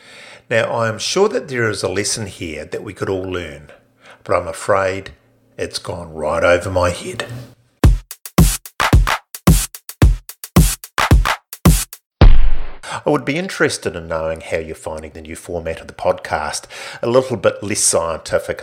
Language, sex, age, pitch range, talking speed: English, male, 50-69, 85-120 Hz, 140 wpm